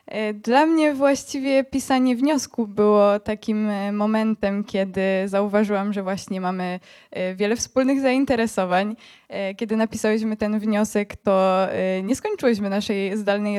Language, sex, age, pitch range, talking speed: Polish, female, 20-39, 210-270 Hz, 110 wpm